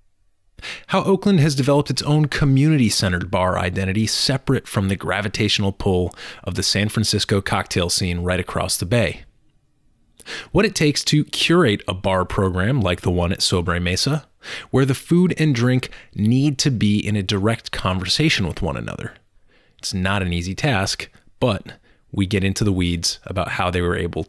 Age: 30-49